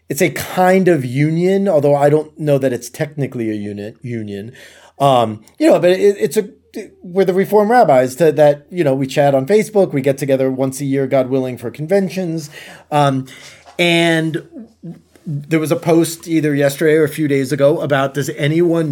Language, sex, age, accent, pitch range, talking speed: English, male, 30-49, American, 135-175 Hz, 195 wpm